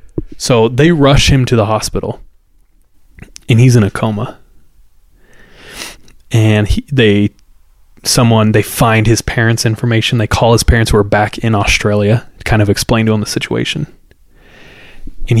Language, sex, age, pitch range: English, male, 20-39, 95-120 Hz